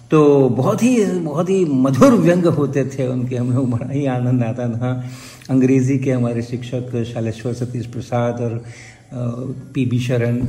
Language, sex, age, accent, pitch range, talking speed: Hindi, male, 50-69, native, 120-140 Hz, 165 wpm